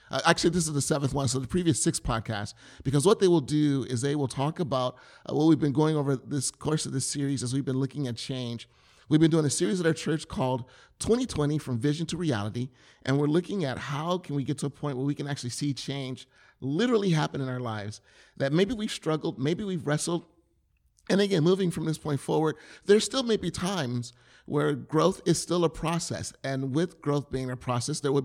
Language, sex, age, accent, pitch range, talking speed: English, male, 30-49, American, 130-165 Hz, 230 wpm